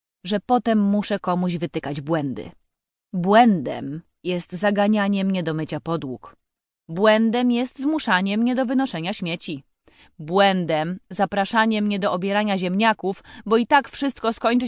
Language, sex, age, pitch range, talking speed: Polish, female, 30-49, 170-235 Hz, 125 wpm